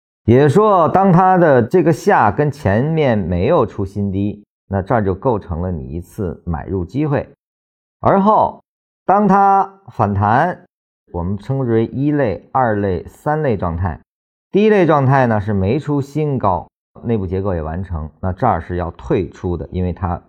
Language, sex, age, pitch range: Chinese, male, 50-69, 85-130 Hz